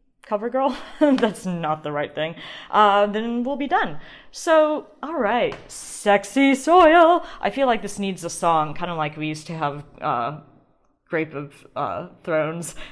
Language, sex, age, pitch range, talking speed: English, female, 30-49, 155-210 Hz, 165 wpm